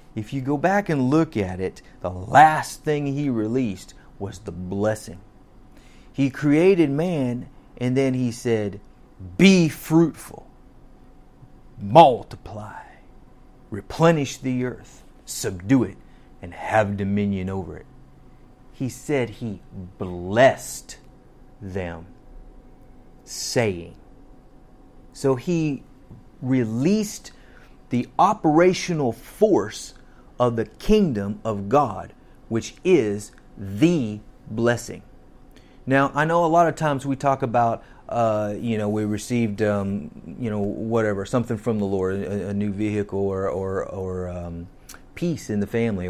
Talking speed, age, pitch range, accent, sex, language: 120 wpm, 40-59, 100-135 Hz, American, male, English